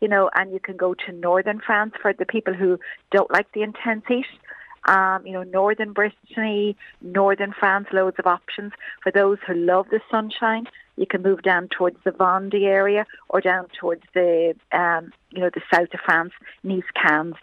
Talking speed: 185 wpm